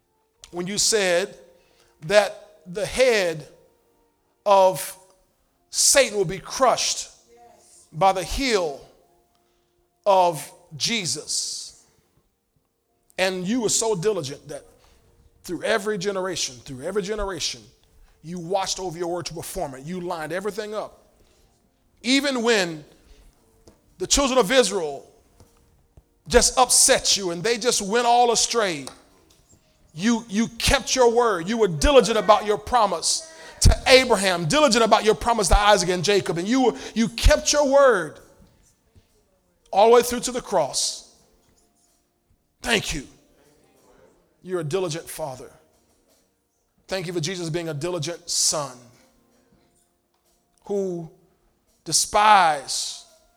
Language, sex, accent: English, male, American